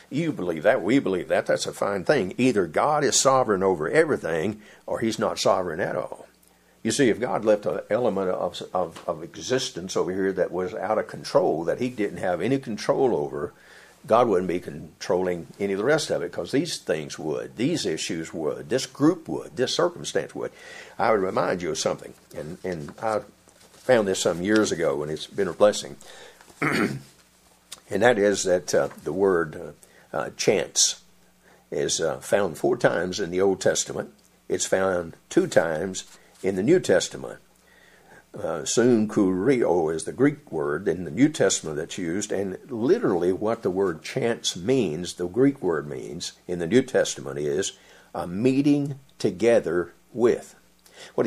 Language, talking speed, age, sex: English, 175 wpm, 60-79, male